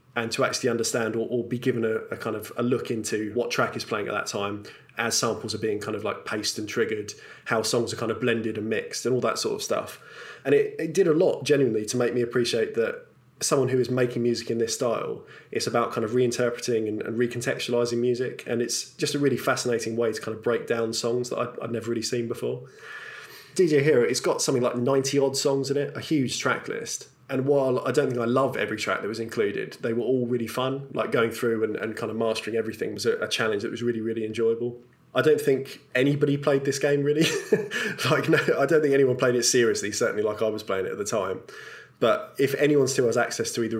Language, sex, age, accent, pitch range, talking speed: English, male, 20-39, British, 115-135 Hz, 245 wpm